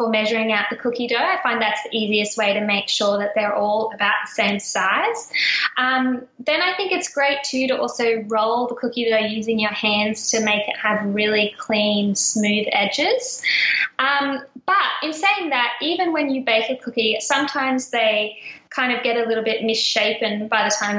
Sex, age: female, 10-29